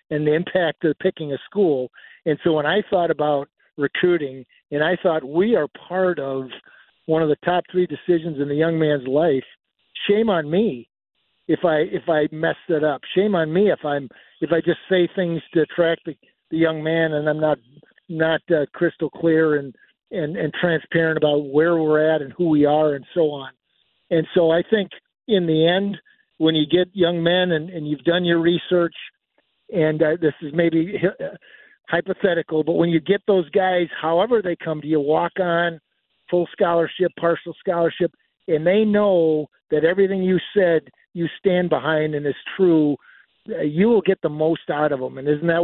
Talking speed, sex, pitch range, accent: 190 wpm, male, 150-175 Hz, American